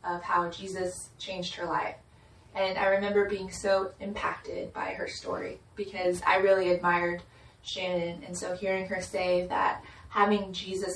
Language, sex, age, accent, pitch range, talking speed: English, female, 20-39, American, 175-200 Hz, 155 wpm